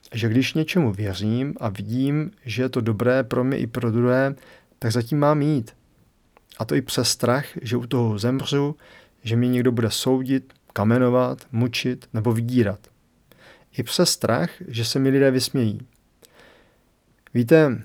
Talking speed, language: 155 wpm, Czech